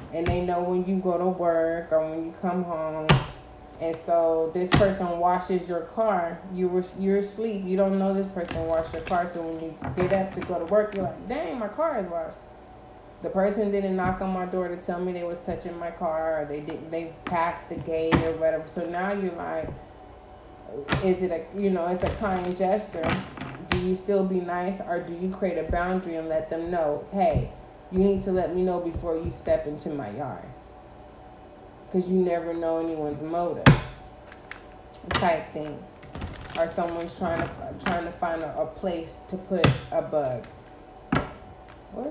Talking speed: 195 wpm